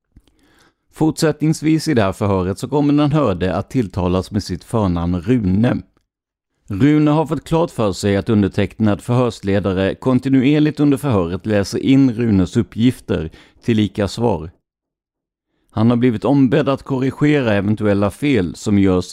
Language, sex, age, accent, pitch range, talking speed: Swedish, male, 50-69, native, 95-130 Hz, 140 wpm